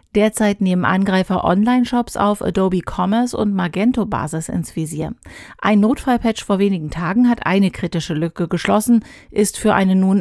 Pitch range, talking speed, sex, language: 180-235 Hz, 155 wpm, female, German